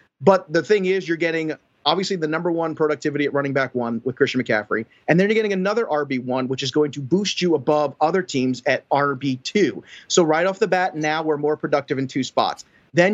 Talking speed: 230 wpm